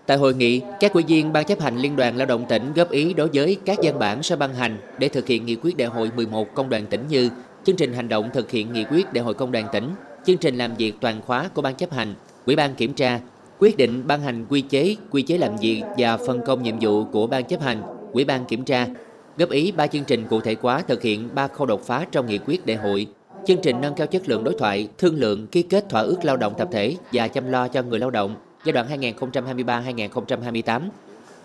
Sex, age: male, 20-39